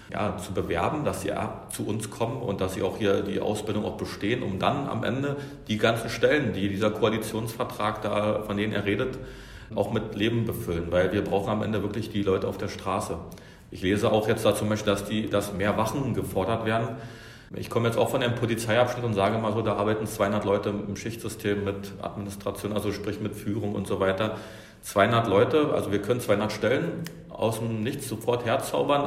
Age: 40-59